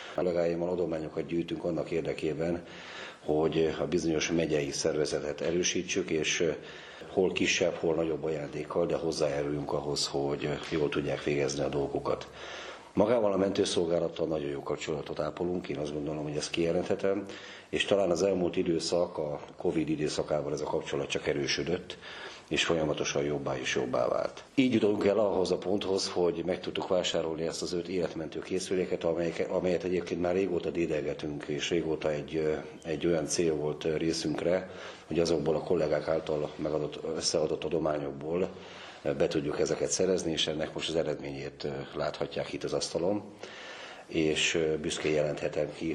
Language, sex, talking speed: Hungarian, male, 145 wpm